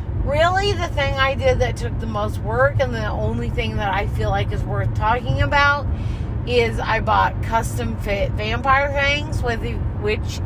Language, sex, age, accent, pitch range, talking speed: English, female, 30-49, American, 105-115 Hz, 165 wpm